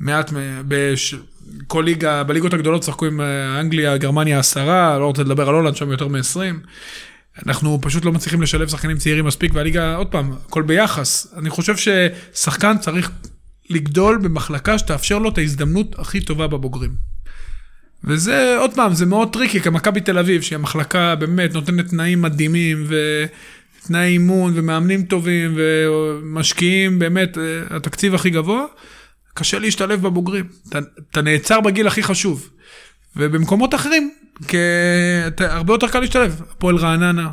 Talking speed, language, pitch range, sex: 140 wpm, Hebrew, 155-205 Hz, male